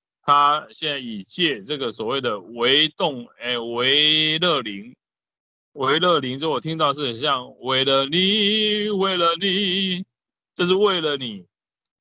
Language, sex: Chinese, male